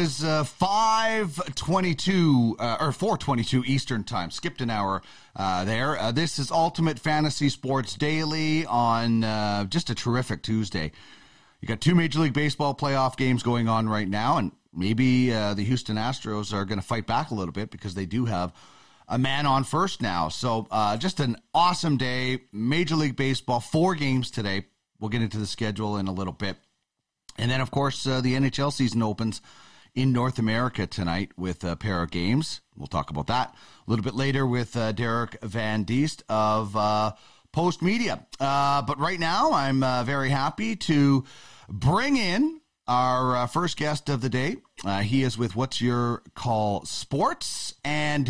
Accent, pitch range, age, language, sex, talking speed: American, 110-145 Hz, 30-49, English, male, 180 wpm